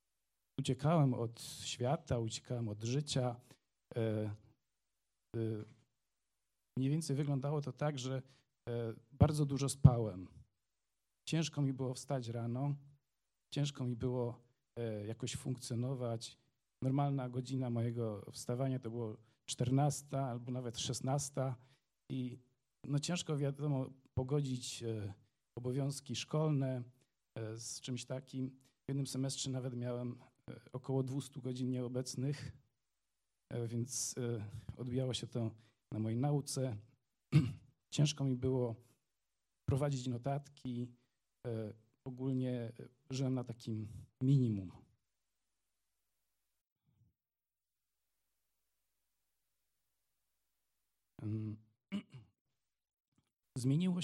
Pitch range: 115-140 Hz